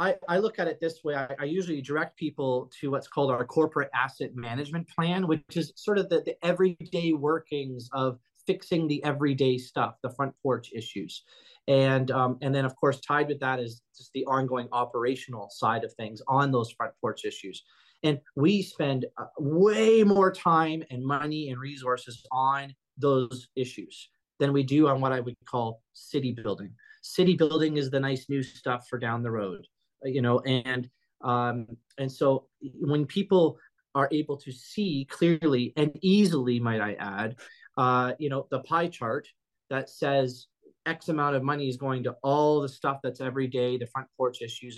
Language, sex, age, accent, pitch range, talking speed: English, male, 30-49, American, 125-155 Hz, 180 wpm